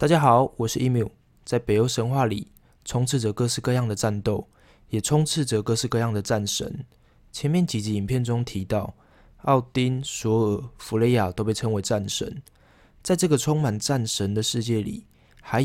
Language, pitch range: Chinese, 105-130 Hz